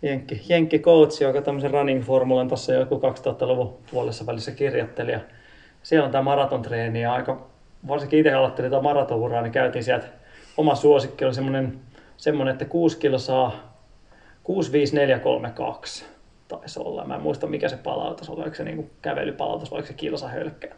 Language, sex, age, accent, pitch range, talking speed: Finnish, male, 30-49, native, 130-155 Hz, 140 wpm